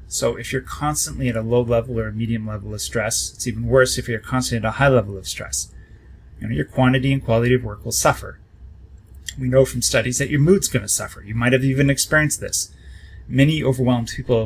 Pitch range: 105-125 Hz